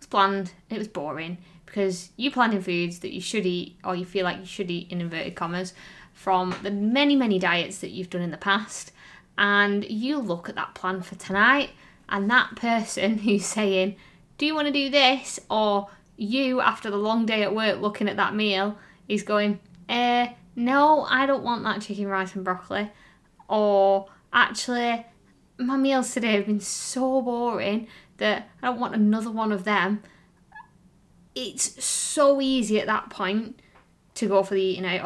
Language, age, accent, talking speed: English, 20-39, British, 185 wpm